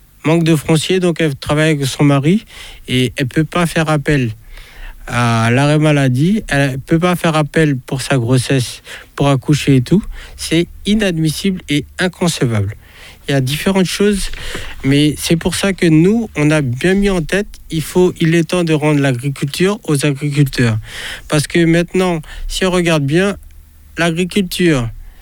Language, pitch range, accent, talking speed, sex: French, 130-175 Hz, French, 165 wpm, male